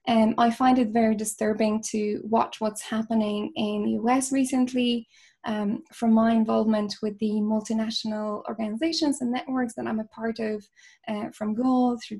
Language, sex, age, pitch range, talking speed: English, female, 10-29, 215-240 Hz, 160 wpm